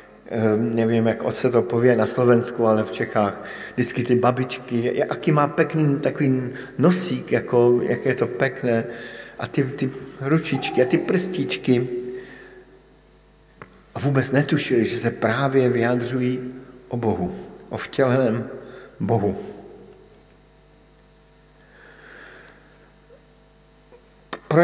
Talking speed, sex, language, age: 105 wpm, male, Slovak, 50-69